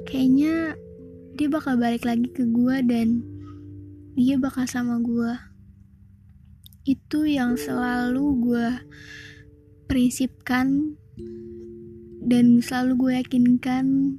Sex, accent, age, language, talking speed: female, native, 20-39, Indonesian, 90 wpm